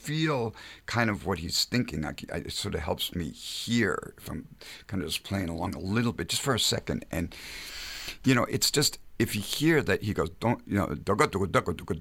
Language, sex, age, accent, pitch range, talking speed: English, male, 60-79, American, 90-115 Hz, 195 wpm